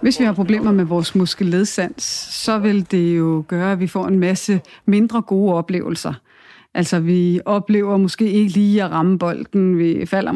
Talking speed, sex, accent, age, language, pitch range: 180 wpm, female, native, 30-49, Danish, 180-210 Hz